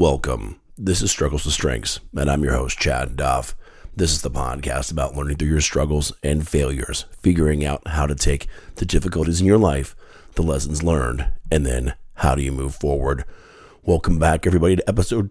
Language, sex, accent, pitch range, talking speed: English, male, American, 70-95 Hz, 190 wpm